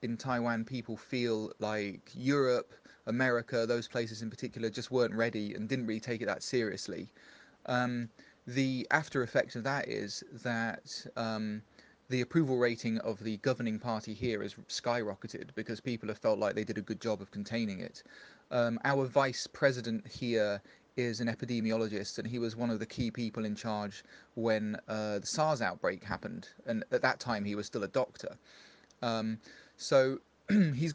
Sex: male